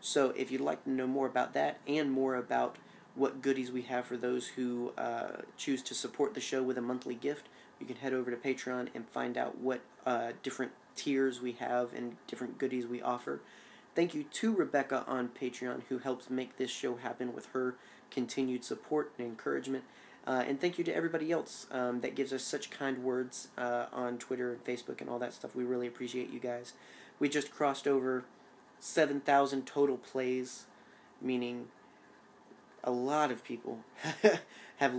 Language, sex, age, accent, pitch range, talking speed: English, male, 30-49, American, 125-135 Hz, 185 wpm